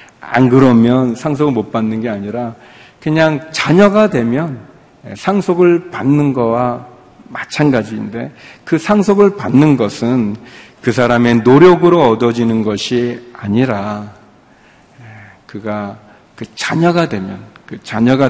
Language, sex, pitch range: Korean, male, 110-135 Hz